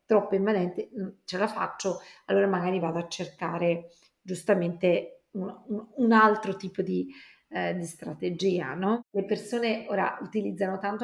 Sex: female